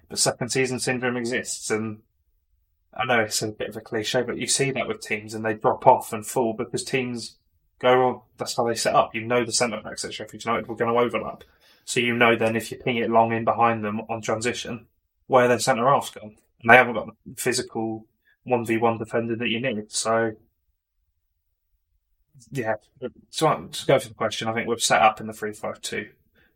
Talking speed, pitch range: 215 wpm, 105-115 Hz